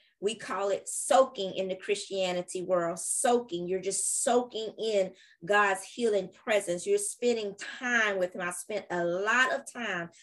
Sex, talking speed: female, 160 wpm